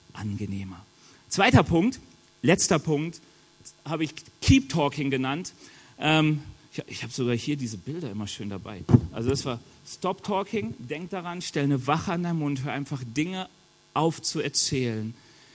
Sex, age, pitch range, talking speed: male, 40-59, 130-170 Hz, 140 wpm